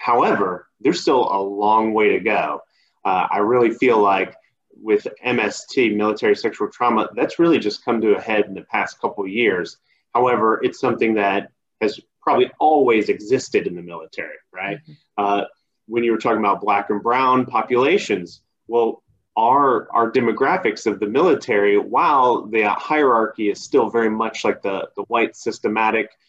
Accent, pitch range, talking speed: American, 110-150 Hz, 165 wpm